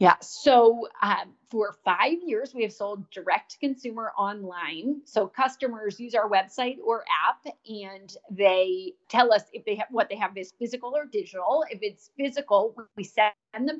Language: English